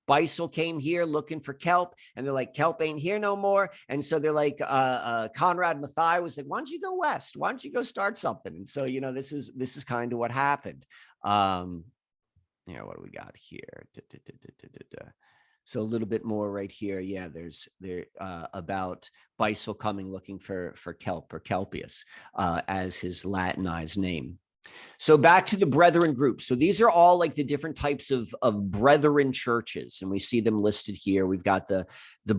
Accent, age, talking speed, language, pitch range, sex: American, 40-59, 210 wpm, English, 105-165 Hz, male